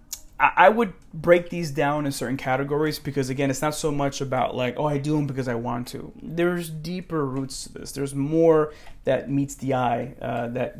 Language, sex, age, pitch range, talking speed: English, male, 20-39, 130-150 Hz, 205 wpm